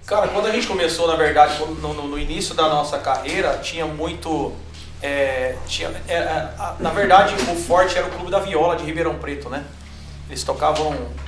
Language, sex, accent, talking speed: Portuguese, male, Brazilian, 190 wpm